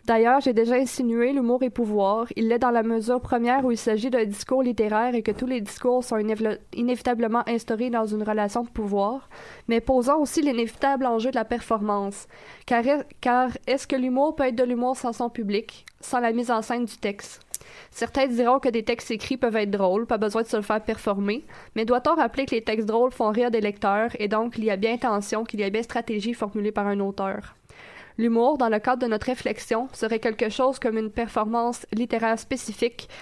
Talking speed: 210 wpm